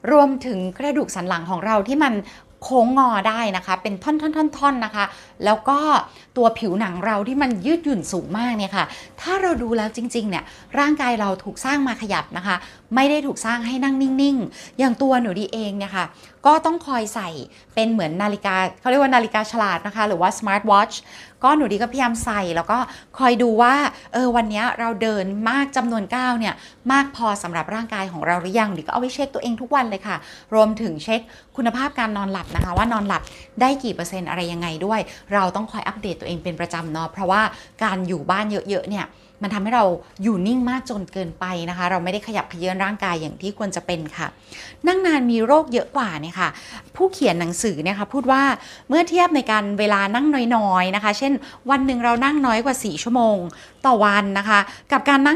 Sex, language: female, Thai